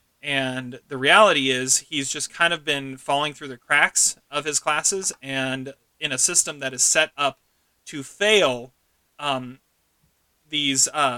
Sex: male